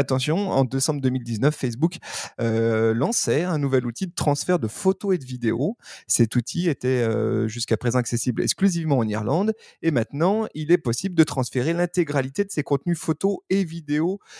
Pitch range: 120-165 Hz